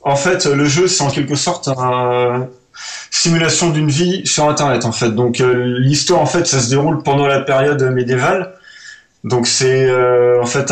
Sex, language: male, French